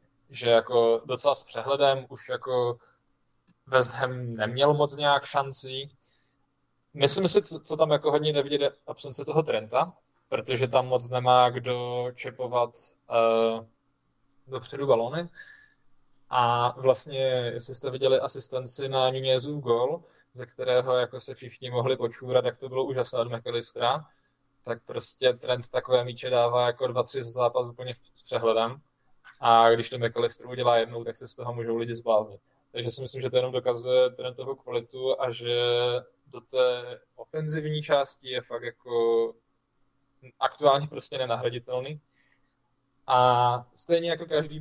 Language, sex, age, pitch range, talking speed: Czech, male, 20-39, 125-145 Hz, 140 wpm